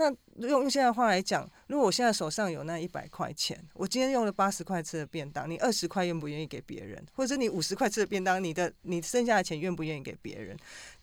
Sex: female